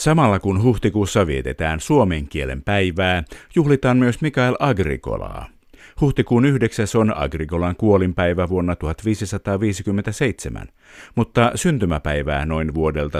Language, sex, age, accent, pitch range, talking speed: Finnish, male, 50-69, native, 80-115 Hz, 100 wpm